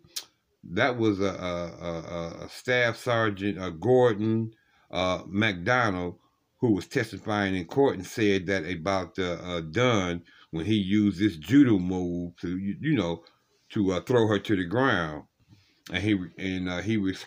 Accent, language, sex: American, English, male